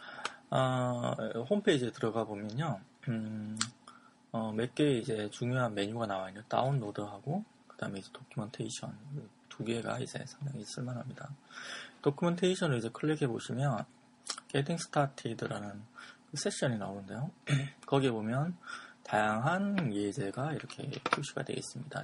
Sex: male